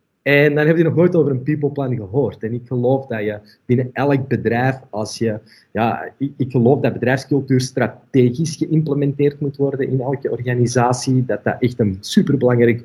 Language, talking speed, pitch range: Dutch, 175 wpm, 110-130 Hz